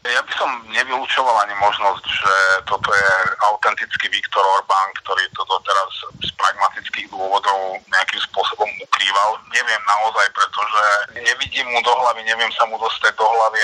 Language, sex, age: Slovak, male, 30-49